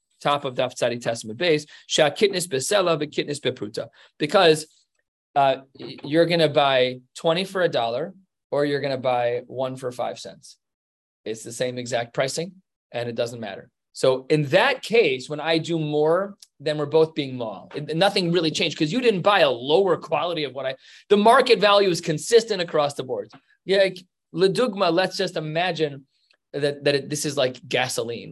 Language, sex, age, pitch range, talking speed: English, male, 30-49, 145-205 Hz, 170 wpm